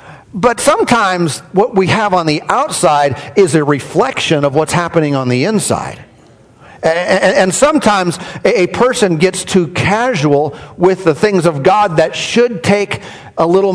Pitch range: 145-190 Hz